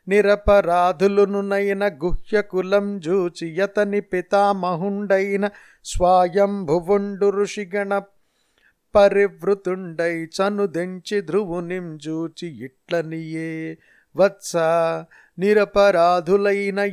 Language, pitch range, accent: Telugu, 170-200 Hz, native